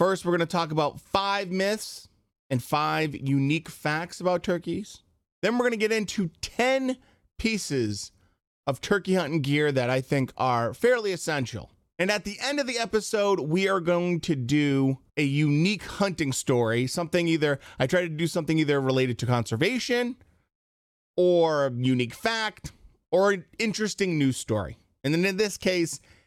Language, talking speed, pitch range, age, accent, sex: English, 160 wpm, 130-195 Hz, 30-49, American, male